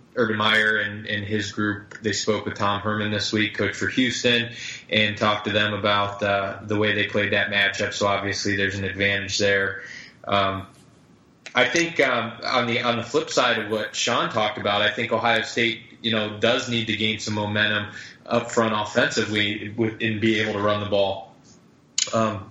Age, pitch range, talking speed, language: 20-39, 100-115 Hz, 190 wpm, English